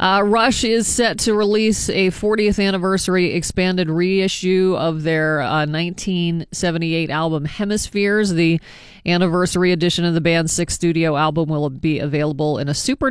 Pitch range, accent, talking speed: 155-190 Hz, American, 145 wpm